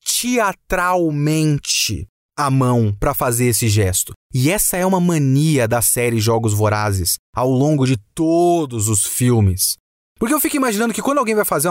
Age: 30-49